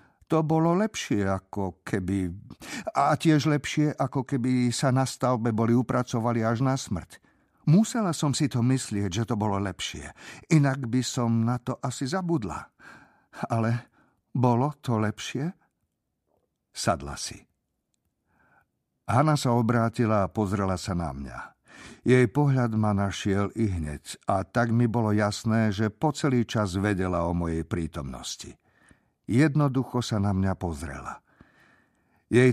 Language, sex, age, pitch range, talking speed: Slovak, male, 50-69, 95-125 Hz, 135 wpm